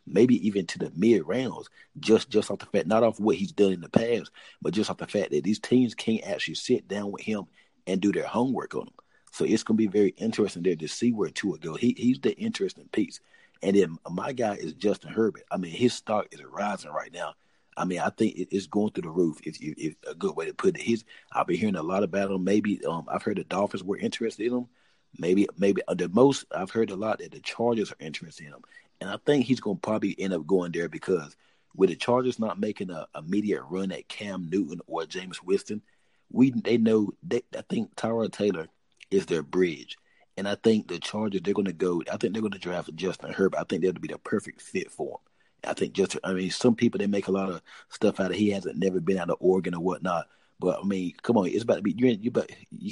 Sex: male